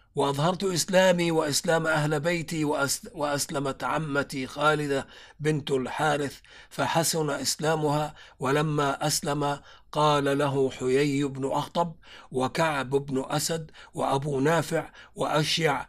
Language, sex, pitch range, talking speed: Arabic, male, 135-155 Hz, 95 wpm